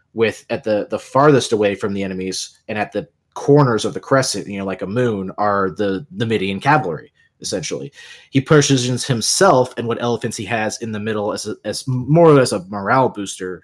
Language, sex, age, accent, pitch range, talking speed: English, male, 20-39, American, 105-130 Hz, 200 wpm